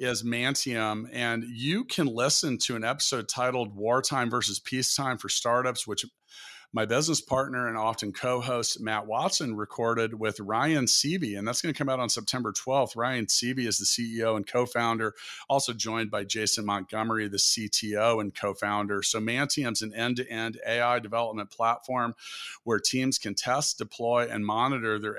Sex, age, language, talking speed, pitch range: male, 40-59, English, 160 wpm, 105-120 Hz